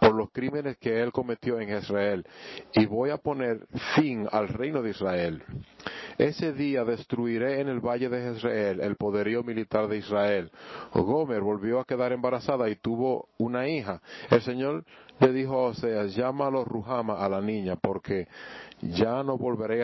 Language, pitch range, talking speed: English, 105-125 Hz, 160 wpm